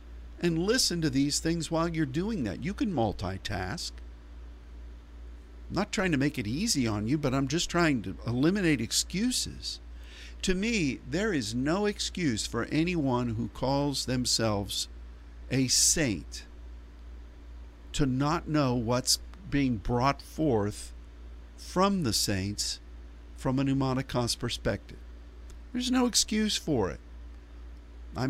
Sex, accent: male, American